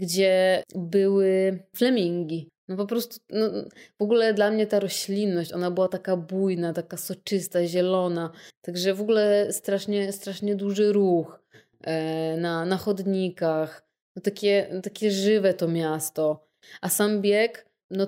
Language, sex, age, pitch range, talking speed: Polish, female, 20-39, 165-205 Hz, 135 wpm